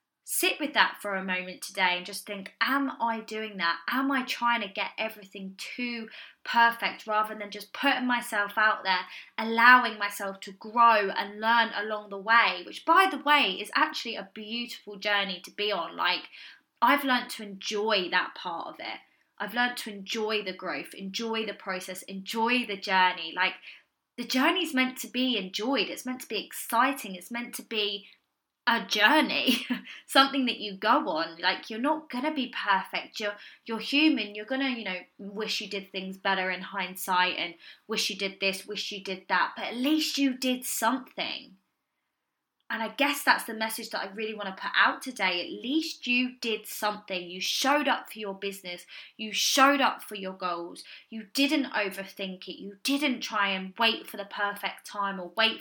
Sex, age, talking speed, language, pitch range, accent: female, 20-39, 190 wpm, English, 195-245 Hz, British